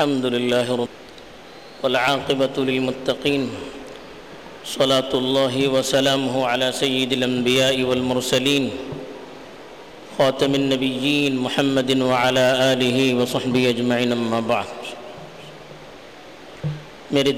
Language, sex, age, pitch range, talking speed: Urdu, male, 50-69, 130-185 Hz, 60 wpm